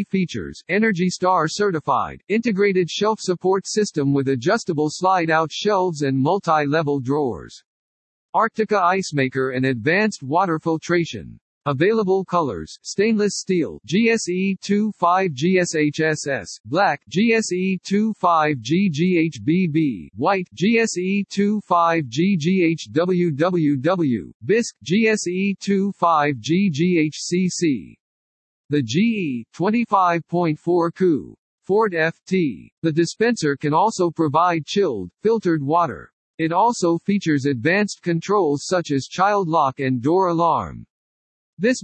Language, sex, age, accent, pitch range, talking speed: English, male, 50-69, American, 155-195 Hz, 85 wpm